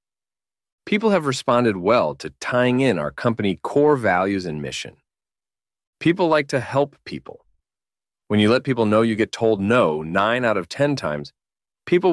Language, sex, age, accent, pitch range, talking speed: English, male, 30-49, American, 95-135 Hz, 165 wpm